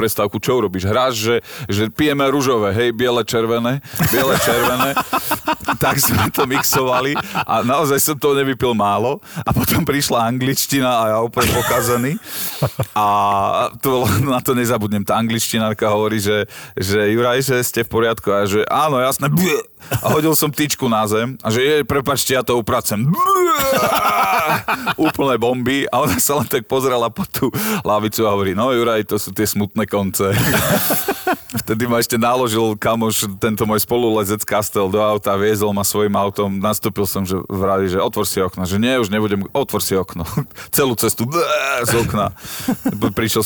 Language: Slovak